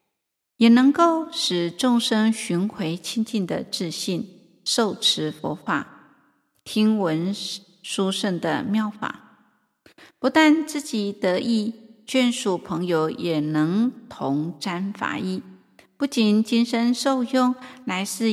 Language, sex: Chinese, female